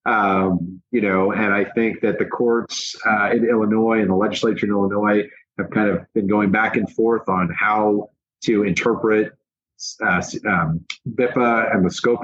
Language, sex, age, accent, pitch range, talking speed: English, male, 30-49, American, 95-120 Hz, 170 wpm